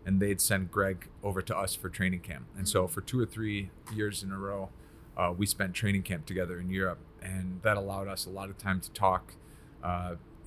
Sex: male